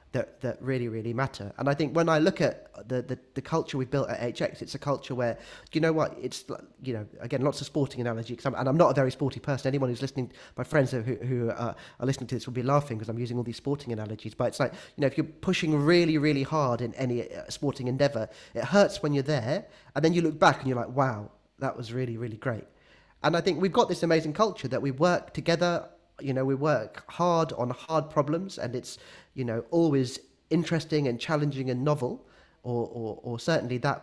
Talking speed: 240 wpm